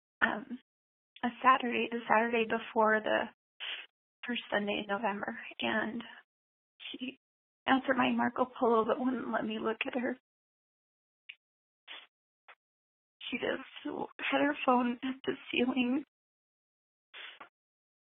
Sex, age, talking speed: female, 20-39, 105 wpm